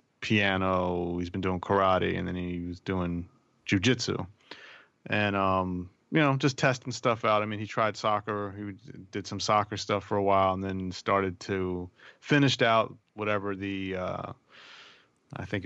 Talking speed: 165 wpm